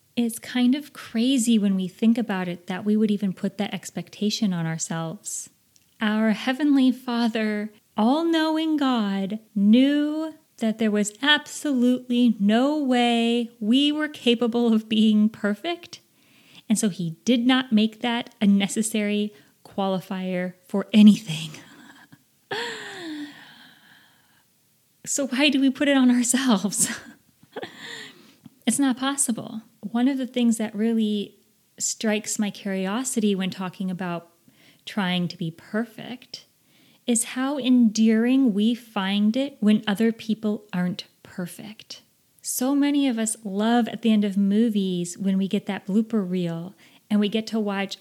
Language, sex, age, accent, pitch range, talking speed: English, female, 30-49, American, 200-245 Hz, 135 wpm